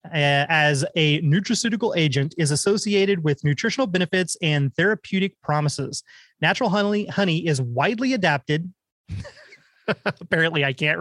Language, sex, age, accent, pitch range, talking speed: English, male, 30-49, American, 155-200 Hz, 120 wpm